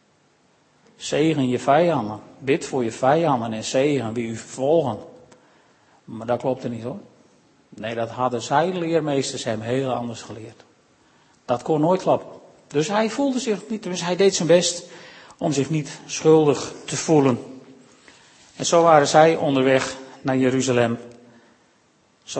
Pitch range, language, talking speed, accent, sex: 130-165 Hz, Dutch, 145 wpm, Dutch, male